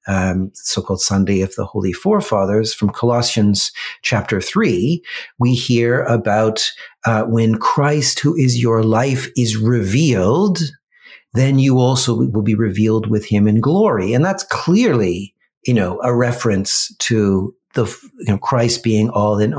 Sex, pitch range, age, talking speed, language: male, 105-130 Hz, 50-69, 145 wpm, English